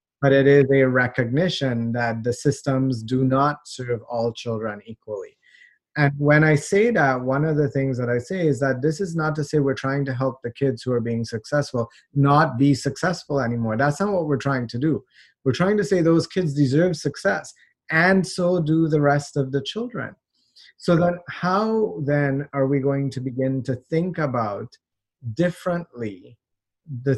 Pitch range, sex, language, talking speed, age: 125-160 Hz, male, English, 185 wpm, 30-49